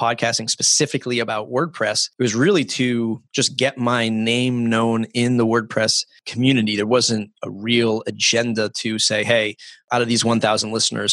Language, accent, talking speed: English, American, 160 wpm